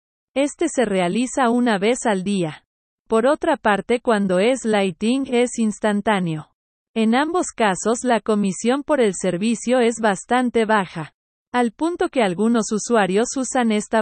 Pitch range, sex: 195-245 Hz, female